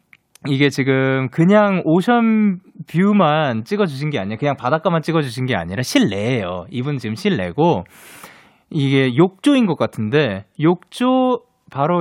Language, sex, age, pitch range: Korean, male, 20-39, 120-195 Hz